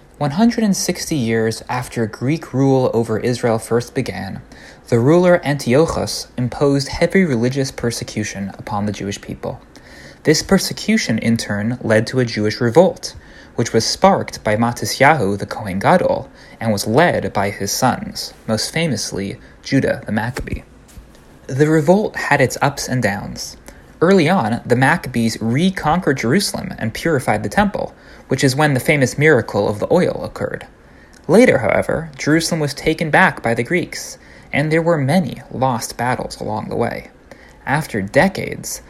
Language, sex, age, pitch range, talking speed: English, male, 20-39, 120-180 Hz, 145 wpm